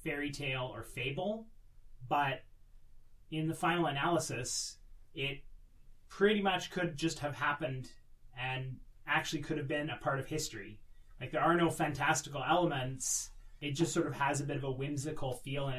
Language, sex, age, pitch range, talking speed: English, male, 30-49, 125-160 Hz, 165 wpm